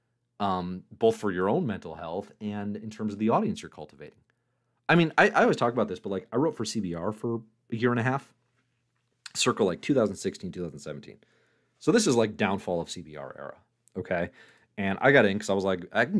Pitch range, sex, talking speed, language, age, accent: 100-130 Hz, male, 215 wpm, English, 30-49, American